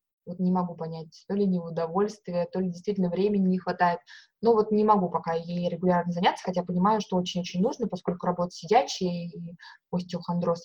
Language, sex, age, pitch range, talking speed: Russian, female, 20-39, 175-210 Hz, 180 wpm